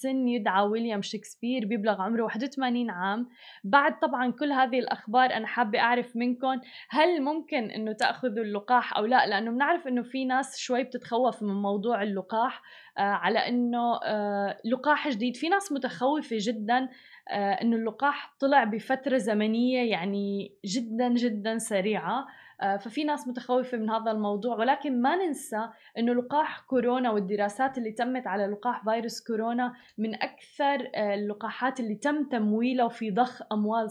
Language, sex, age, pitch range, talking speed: Arabic, female, 20-39, 210-255 Hz, 140 wpm